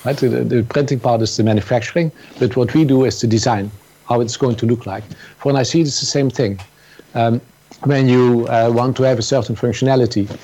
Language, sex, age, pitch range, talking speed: English, male, 50-69, 115-140 Hz, 220 wpm